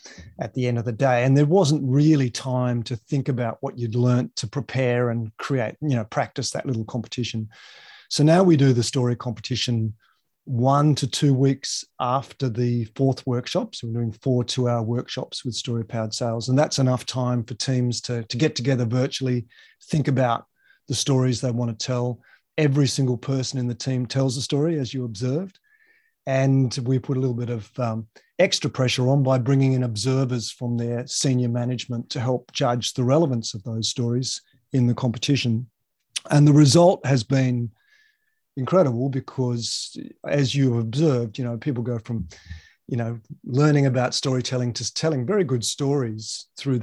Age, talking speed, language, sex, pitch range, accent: 30-49, 180 wpm, English, male, 120-140 Hz, Australian